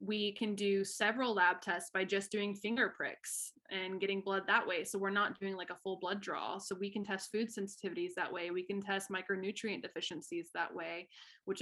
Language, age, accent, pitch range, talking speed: English, 20-39, American, 190-220 Hz, 210 wpm